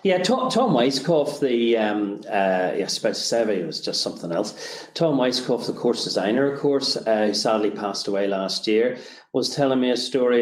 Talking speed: 185 wpm